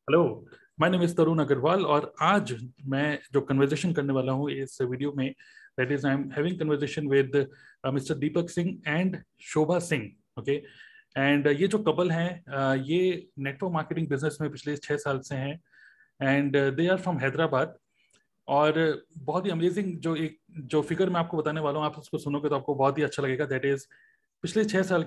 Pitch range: 140-170 Hz